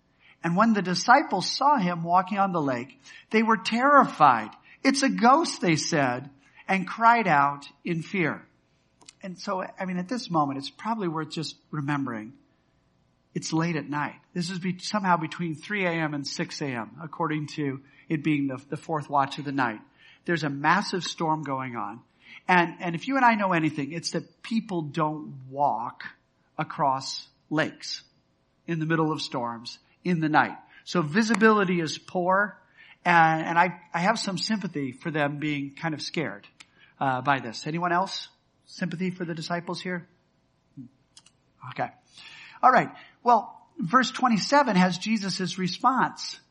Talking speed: 160 wpm